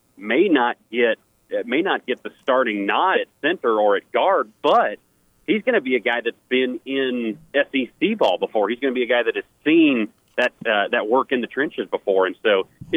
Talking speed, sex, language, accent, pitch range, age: 220 wpm, male, English, American, 105-145 Hz, 40-59